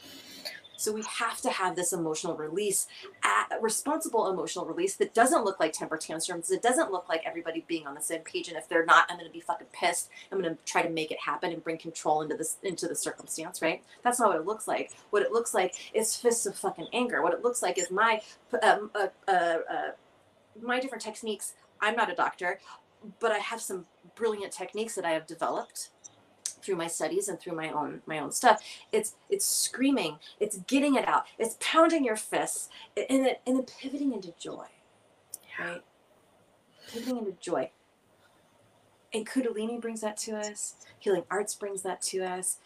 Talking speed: 200 wpm